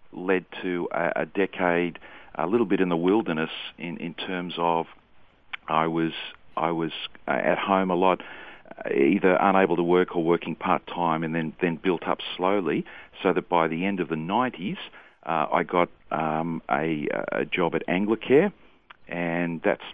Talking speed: 170 wpm